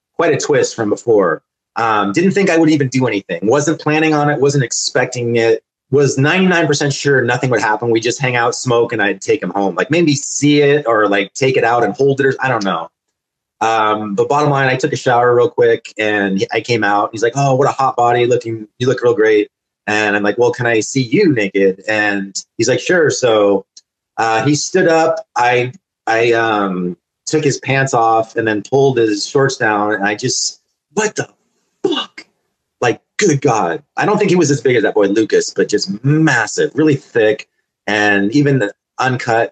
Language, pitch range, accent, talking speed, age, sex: English, 110-150 Hz, American, 215 wpm, 30-49, male